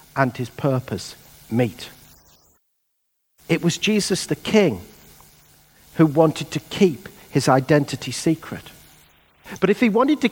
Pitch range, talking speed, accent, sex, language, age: 135-180 Hz, 120 wpm, British, male, English, 50-69